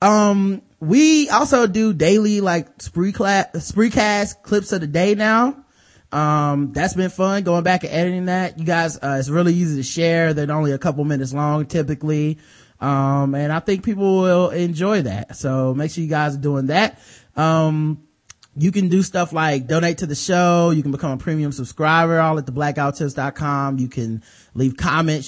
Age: 20-39